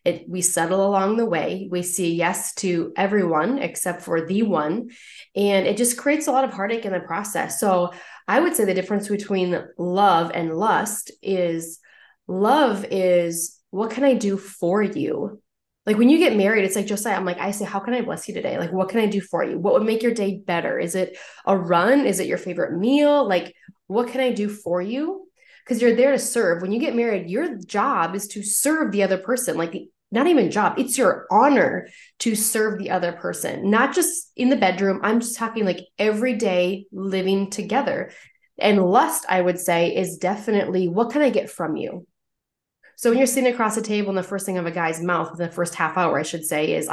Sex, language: female, English